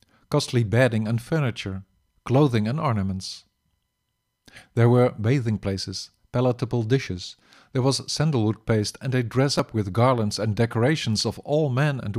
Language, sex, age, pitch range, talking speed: English, male, 50-69, 105-130 Hz, 145 wpm